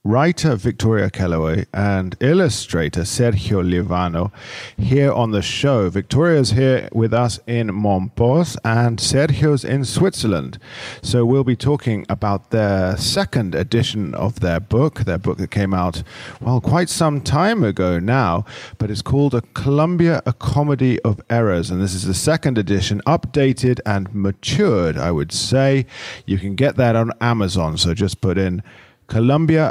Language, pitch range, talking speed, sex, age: English, 100-135 Hz, 150 wpm, male, 40-59